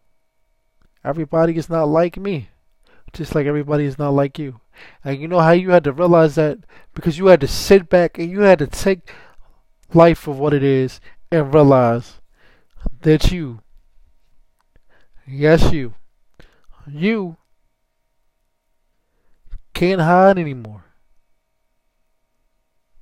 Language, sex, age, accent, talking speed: English, male, 20-39, American, 125 wpm